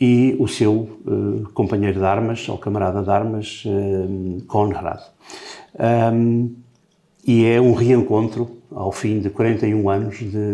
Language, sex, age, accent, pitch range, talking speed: Portuguese, male, 50-69, Portuguese, 100-120 Hz, 135 wpm